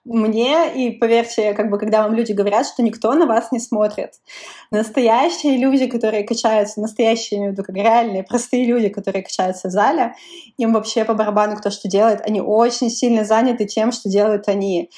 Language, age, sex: Russian, 20-39, female